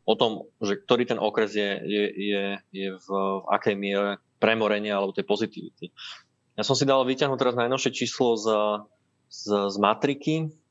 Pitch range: 105-125 Hz